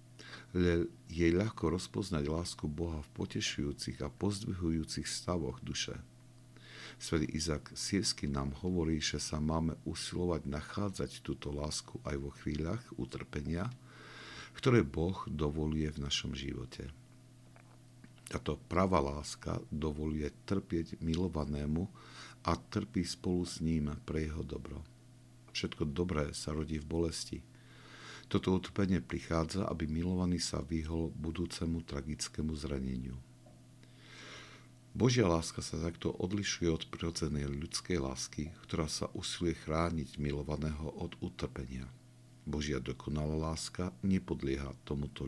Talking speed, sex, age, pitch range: 110 wpm, male, 60-79, 75-95 Hz